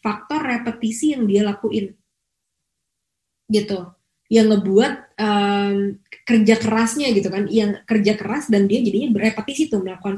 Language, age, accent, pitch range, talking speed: English, 20-39, Indonesian, 195-235 Hz, 130 wpm